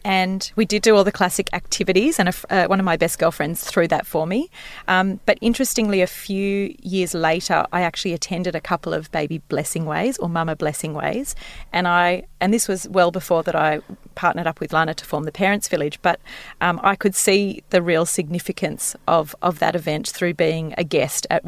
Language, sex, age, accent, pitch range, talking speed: English, female, 30-49, Australian, 165-190 Hz, 210 wpm